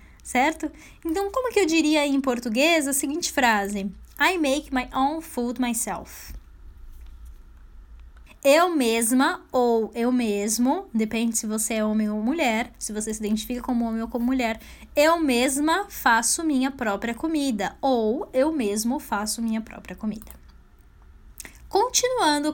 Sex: female